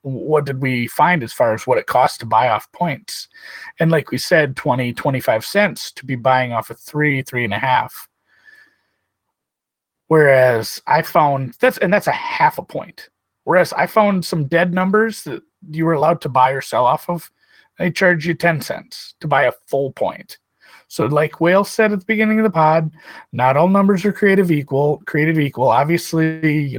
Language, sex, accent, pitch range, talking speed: English, male, American, 130-170 Hz, 195 wpm